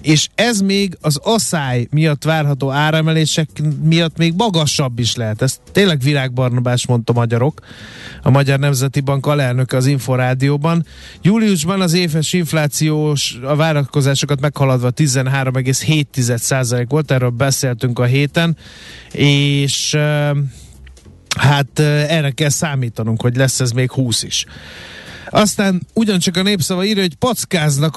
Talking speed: 120 wpm